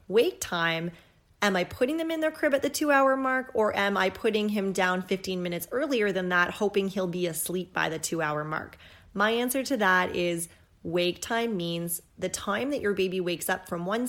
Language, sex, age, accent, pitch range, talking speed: English, female, 30-49, American, 180-235 Hz, 210 wpm